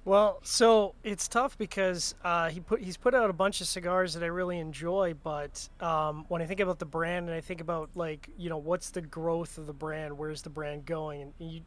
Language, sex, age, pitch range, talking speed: English, male, 20-39, 160-185 Hz, 240 wpm